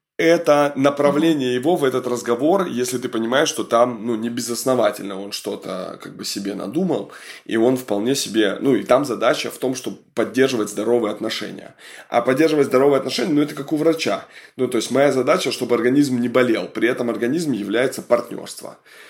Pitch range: 115-145 Hz